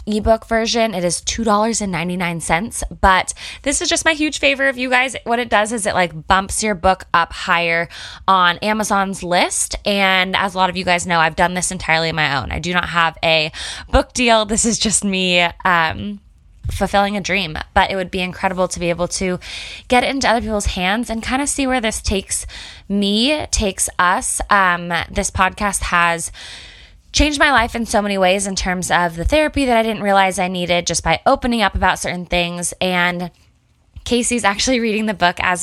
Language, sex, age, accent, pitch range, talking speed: English, female, 20-39, American, 175-220 Hz, 200 wpm